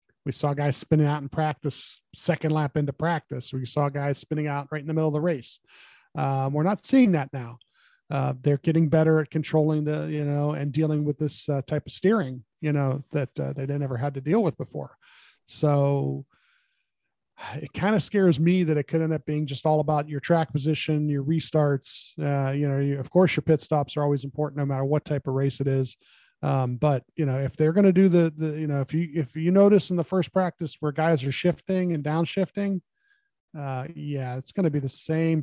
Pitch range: 140-165 Hz